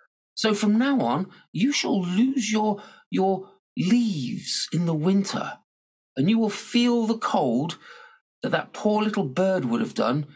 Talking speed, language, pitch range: 155 wpm, English, 135-225 Hz